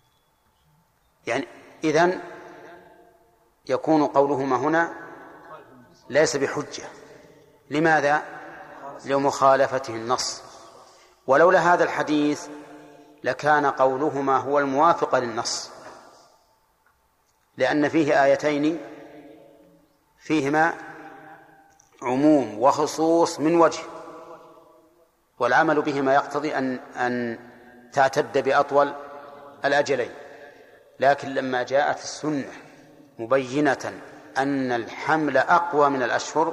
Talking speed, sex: 70 wpm, male